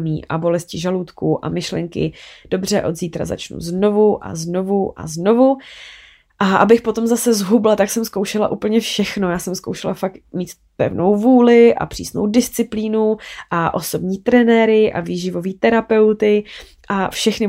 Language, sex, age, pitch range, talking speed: Czech, female, 20-39, 175-215 Hz, 145 wpm